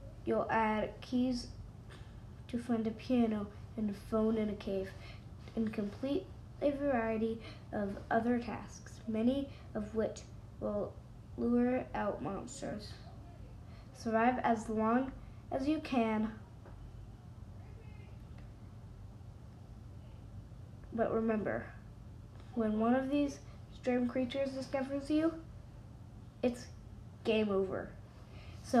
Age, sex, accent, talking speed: 10-29, female, American, 100 wpm